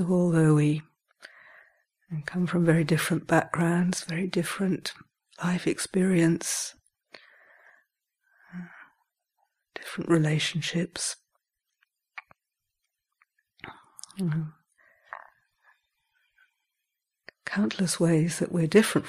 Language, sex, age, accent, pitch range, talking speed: English, female, 60-79, British, 160-185 Hz, 65 wpm